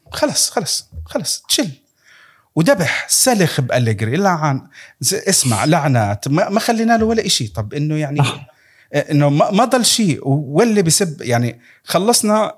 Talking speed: 125 wpm